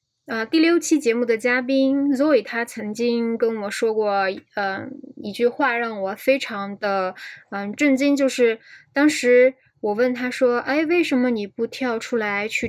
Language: Chinese